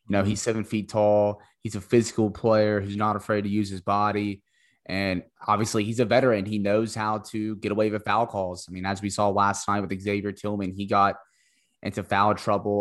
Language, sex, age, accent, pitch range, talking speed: English, male, 20-39, American, 100-115 Hz, 215 wpm